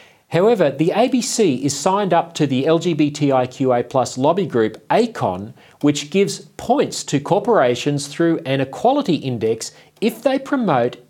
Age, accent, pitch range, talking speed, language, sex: 40-59, Australian, 130-190 Hz, 130 wpm, English, male